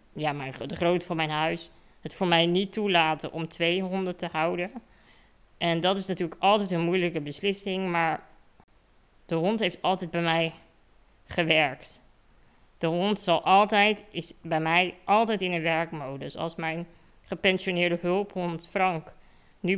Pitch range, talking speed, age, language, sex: 160-180 Hz, 155 wpm, 20-39, Dutch, female